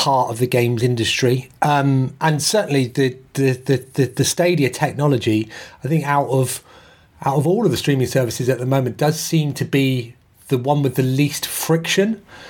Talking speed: 185 wpm